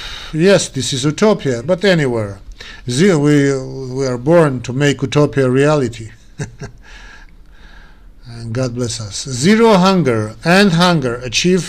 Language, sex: English, male